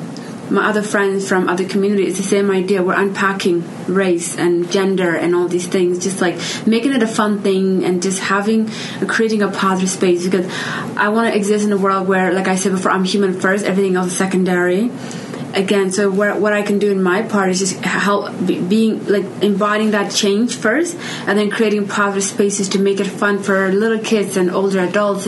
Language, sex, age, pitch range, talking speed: English, female, 20-39, 190-215 Hz, 205 wpm